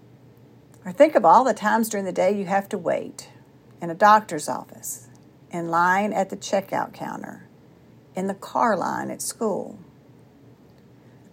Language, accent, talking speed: English, American, 160 wpm